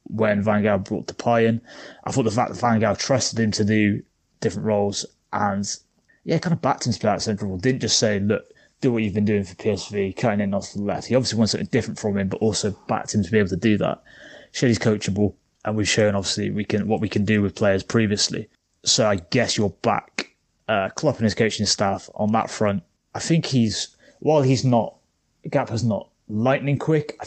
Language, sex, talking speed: English, male, 230 wpm